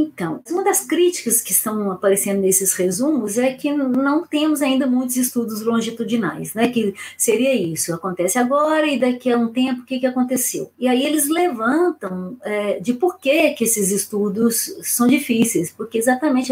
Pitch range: 205-275 Hz